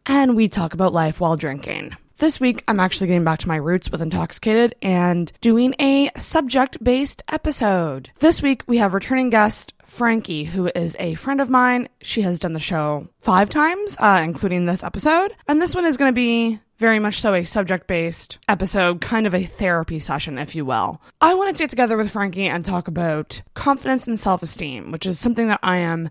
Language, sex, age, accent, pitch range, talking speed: English, female, 20-39, American, 165-250 Hz, 200 wpm